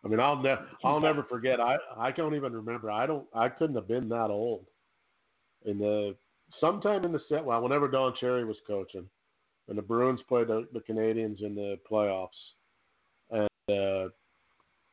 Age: 50-69